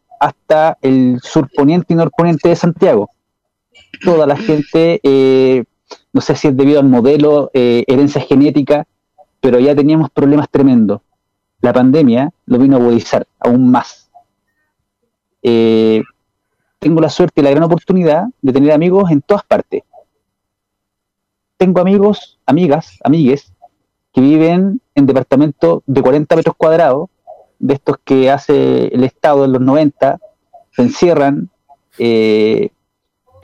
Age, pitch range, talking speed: 30-49, 125-165 Hz, 130 wpm